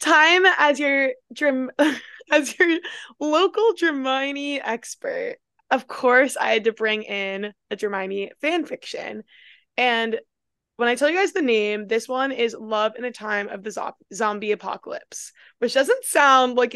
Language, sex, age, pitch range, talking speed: English, female, 20-39, 210-280 Hz, 160 wpm